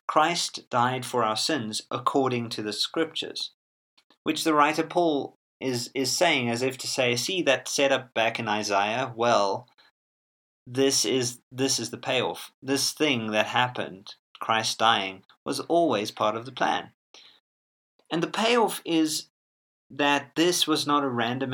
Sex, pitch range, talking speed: male, 115-145 Hz, 155 wpm